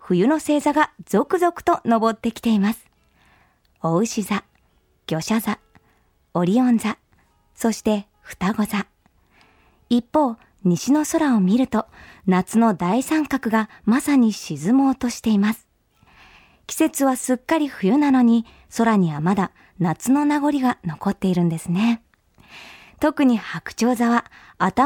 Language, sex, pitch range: Japanese, male, 195-260 Hz